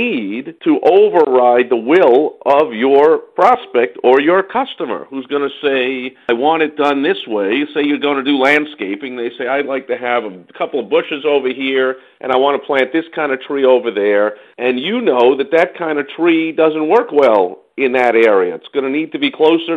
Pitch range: 135-195 Hz